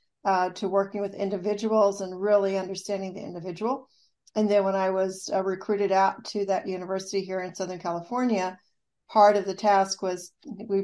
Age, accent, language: 40-59, American, English